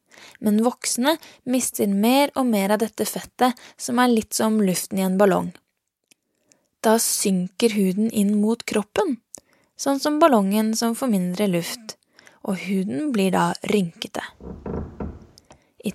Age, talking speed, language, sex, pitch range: 20-39, 135 wpm, English, female, 190-230 Hz